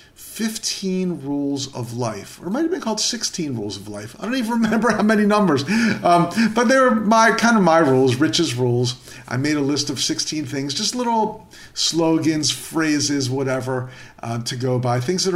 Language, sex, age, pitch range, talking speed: English, male, 50-69, 125-170 Hz, 190 wpm